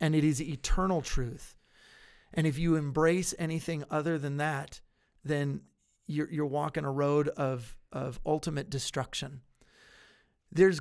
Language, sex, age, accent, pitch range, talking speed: English, male, 30-49, American, 145-175 Hz, 135 wpm